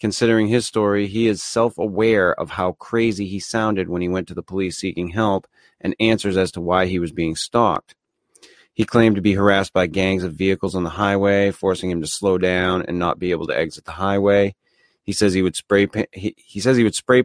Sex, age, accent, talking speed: male, 30-49, American, 200 wpm